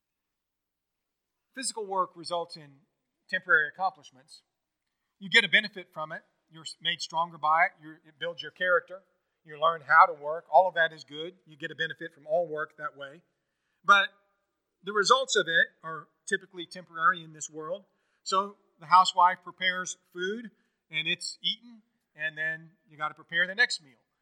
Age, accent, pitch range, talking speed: 40-59, American, 150-185 Hz, 170 wpm